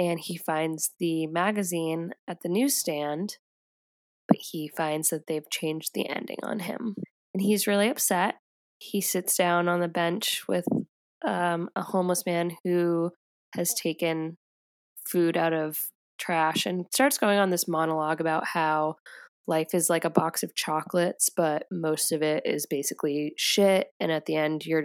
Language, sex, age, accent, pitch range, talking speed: English, female, 10-29, American, 160-185 Hz, 160 wpm